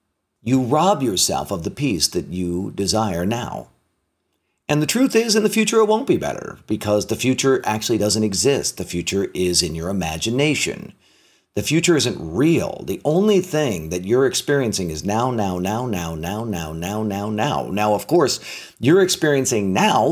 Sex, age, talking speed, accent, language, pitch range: male, 50-69, 175 wpm, American, English, 105-130 Hz